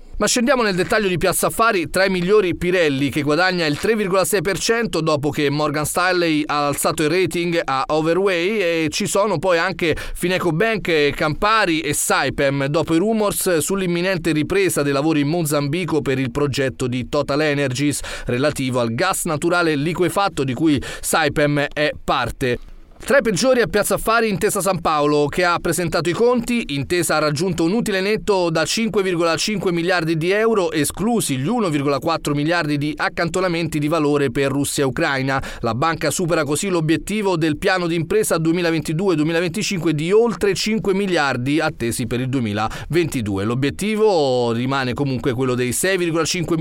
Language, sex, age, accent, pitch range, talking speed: Italian, male, 30-49, native, 145-190 Hz, 155 wpm